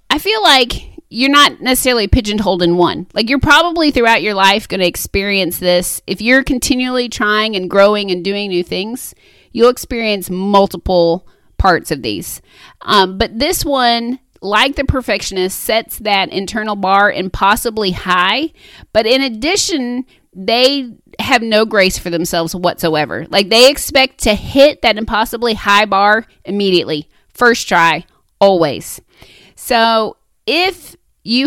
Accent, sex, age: American, female, 30-49